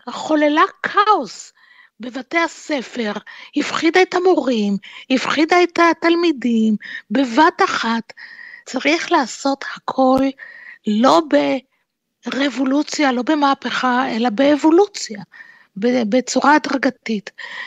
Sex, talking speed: female, 80 wpm